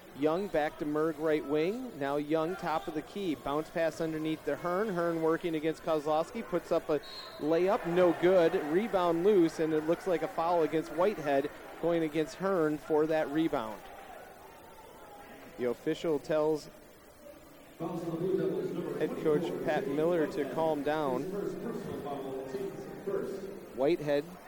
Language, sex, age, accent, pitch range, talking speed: English, male, 40-59, American, 150-175 Hz, 130 wpm